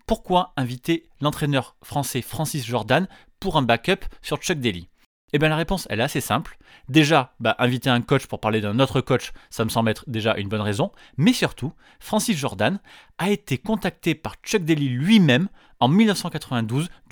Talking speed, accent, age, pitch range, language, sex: 180 wpm, French, 30-49, 125-180 Hz, French, male